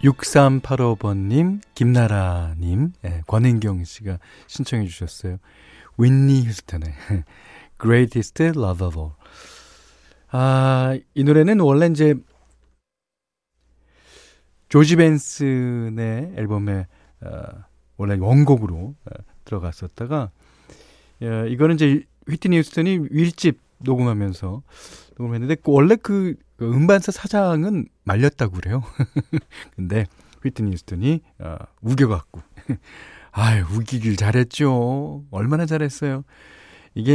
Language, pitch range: Korean, 95-145 Hz